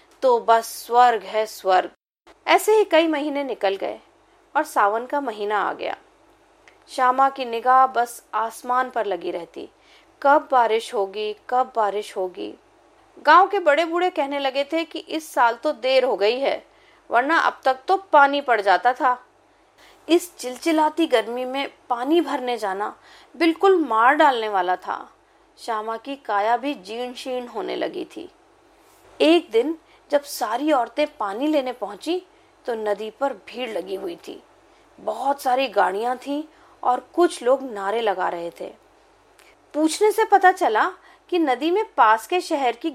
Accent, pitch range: native, 235-350 Hz